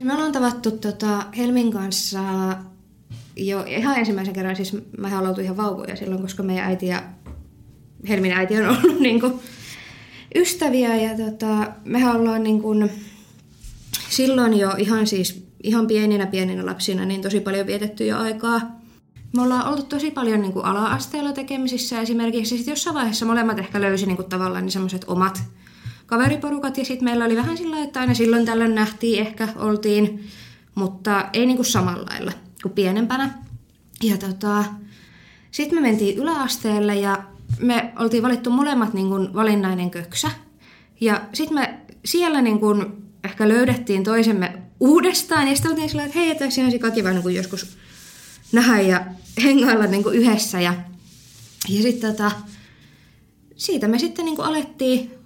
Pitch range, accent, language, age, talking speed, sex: 195-245 Hz, native, Finnish, 20-39, 140 wpm, female